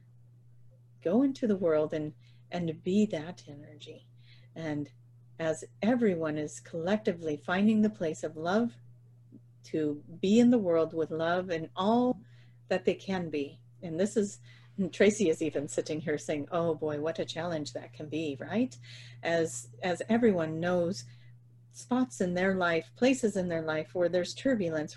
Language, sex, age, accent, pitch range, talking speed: English, female, 40-59, American, 120-185 Hz, 155 wpm